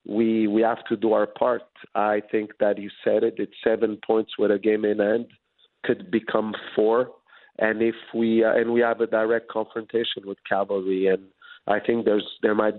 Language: English